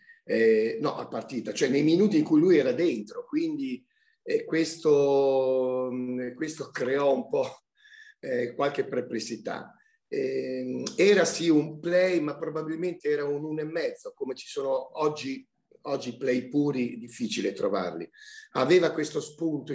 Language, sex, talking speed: Italian, male, 145 wpm